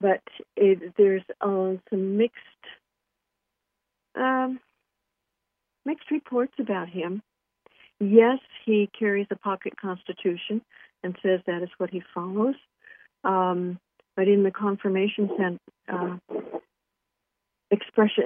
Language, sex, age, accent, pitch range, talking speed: English, female, 60-79, American, 185-210 Hz, 105 wpm